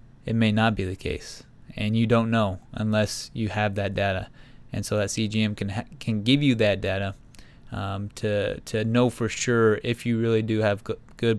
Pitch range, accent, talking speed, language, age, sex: 105-115 Hz, American, 205 wpm, English, 20-39, male